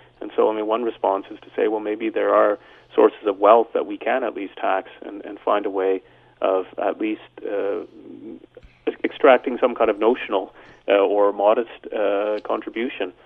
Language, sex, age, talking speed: English, male, 30-49, 185 wpm